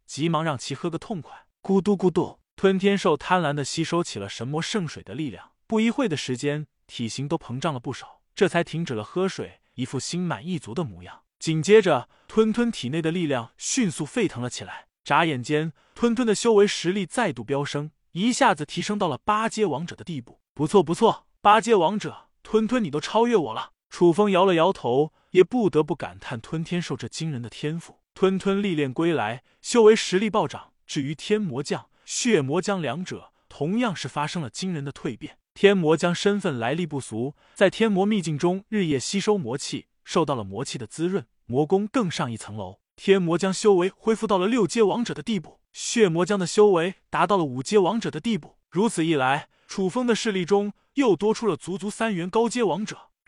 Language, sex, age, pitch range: Chinese, male, 20-39, 145-205 Hz